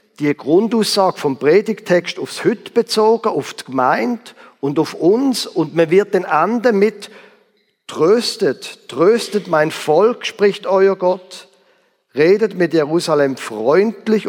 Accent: German